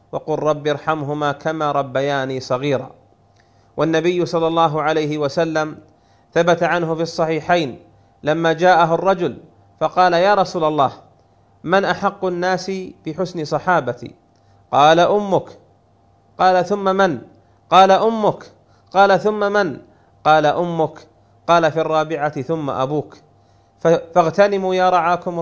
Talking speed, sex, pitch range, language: 110 wpm, male, 145-175 Hz, Arabic